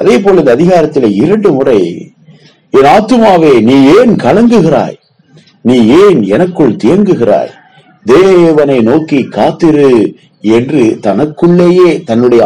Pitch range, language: 135-195 Hz, Tamil